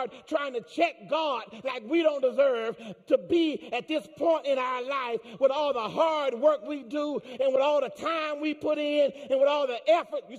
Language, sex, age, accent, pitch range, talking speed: English, male, 40-59, American, 250-345 Hz, 215 wpm